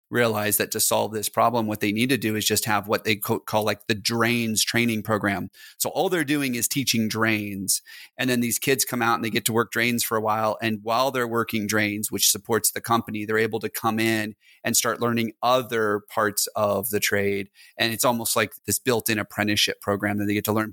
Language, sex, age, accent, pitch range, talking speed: English, male, 30-49, American, 105-120 Hz, 230 wpm